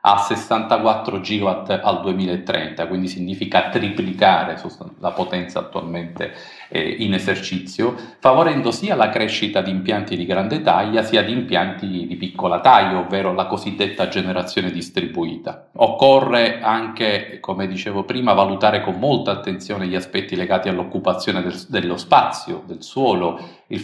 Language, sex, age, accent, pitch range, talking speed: Italian, male, 40-59, native, 95-110 Hz, 130 wpm